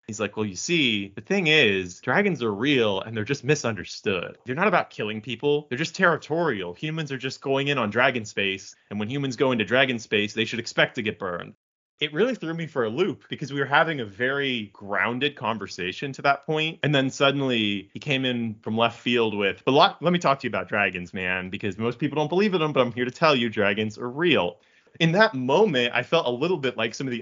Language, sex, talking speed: English, male, 240 wpm